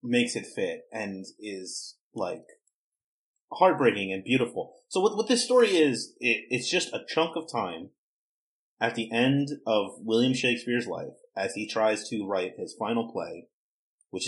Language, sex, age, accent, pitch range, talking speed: English, male, 30-49, American, 100-140 Hz, 160 wpm